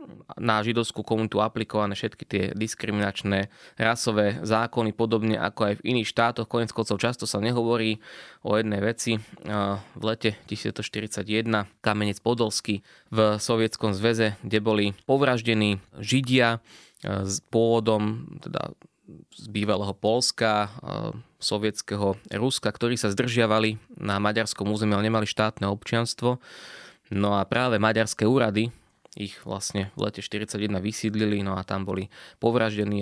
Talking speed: 125 wpm